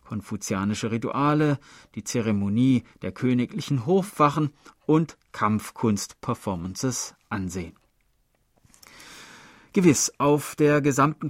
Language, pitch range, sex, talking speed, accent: German, 115-150 Hz, male, 75 wpm, German